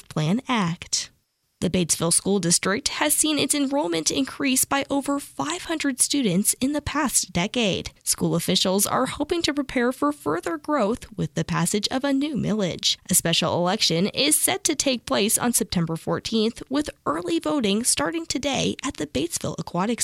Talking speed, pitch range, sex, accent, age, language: 165 wpm, 185-280 Hz, female, American, 10-29, English